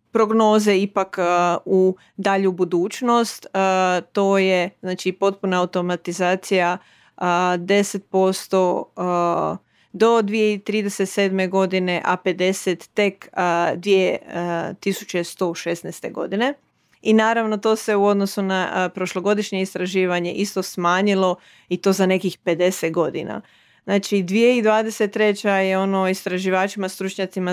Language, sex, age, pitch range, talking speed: Croatian, female, 30-49, 180-205 Hz, 90 wpm